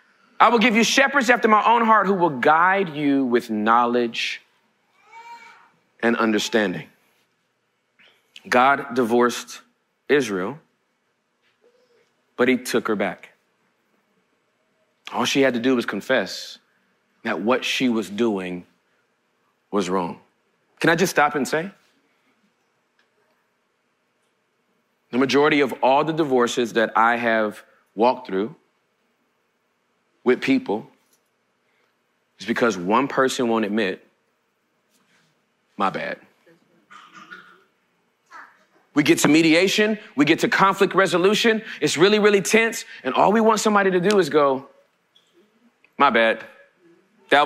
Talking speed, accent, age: 115 wpm, American, 40-59